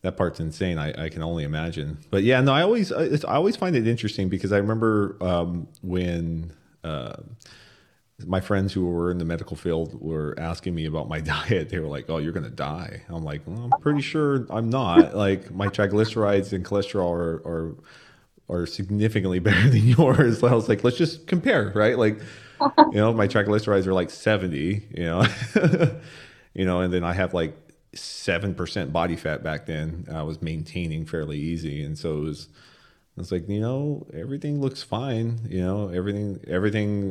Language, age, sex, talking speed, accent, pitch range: English, 30-49, male, 190 wpm, American, 80-110 Hz